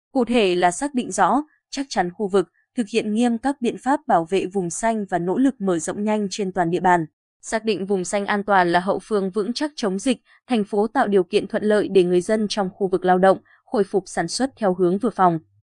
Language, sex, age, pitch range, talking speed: Vietnamese, female, 20-39, 185-235 Hz, 255 wpm